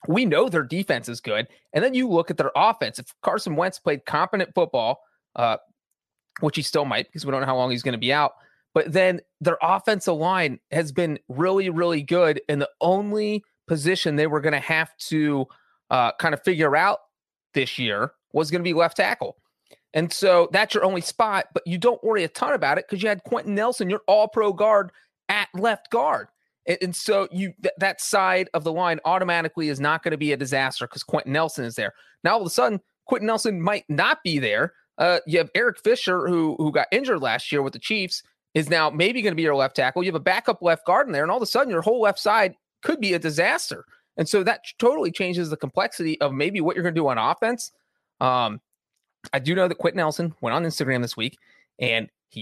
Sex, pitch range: male, 155-200 Hz